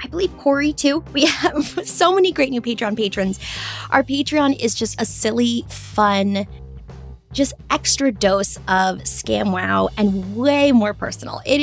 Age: 20-39